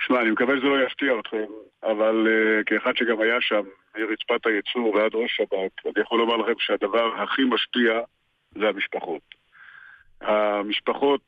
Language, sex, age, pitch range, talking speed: Hebrew, male, 50-69, 110-140 Hz, 150 wpm